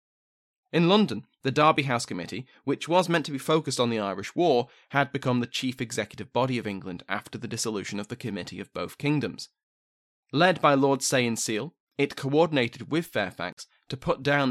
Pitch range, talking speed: 115-155 Hz, 190 wpm